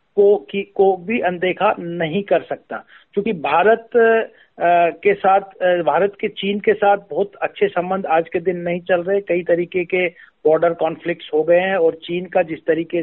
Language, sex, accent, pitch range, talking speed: Hindi, male, native, 165-205 Hz, 185 wpm